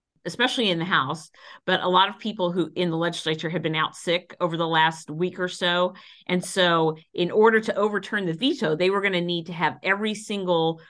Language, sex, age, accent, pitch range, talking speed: English, female, 50-69, American, 155-180 Hz, 220 wpm